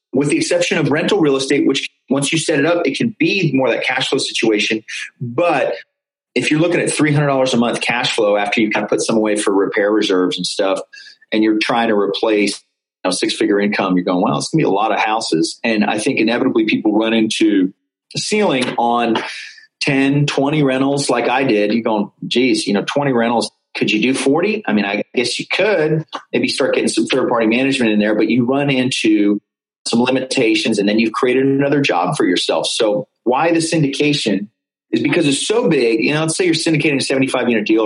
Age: 30-49